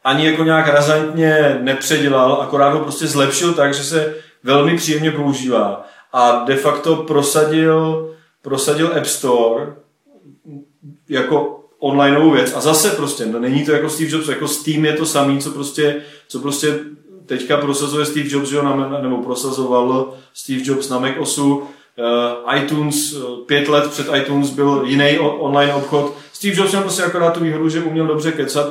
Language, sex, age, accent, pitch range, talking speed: Czech, male, 30-49, native, 135-150 Hz, 165 wpm